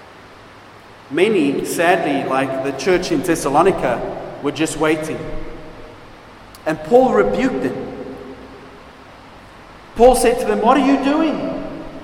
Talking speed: 110 wpm